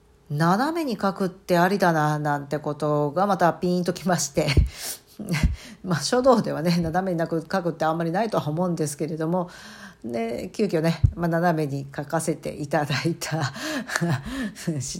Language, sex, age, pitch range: Japanese, female, 50-69, 150-185 Hz